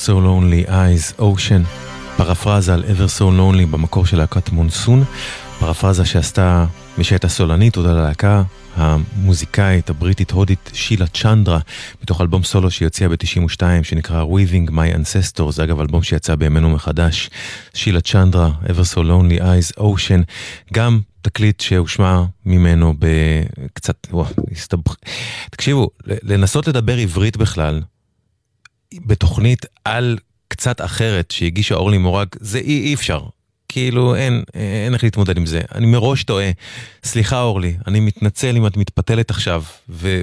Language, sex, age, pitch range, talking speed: English, male, 30-49, 85-105 Hz, 135 wpm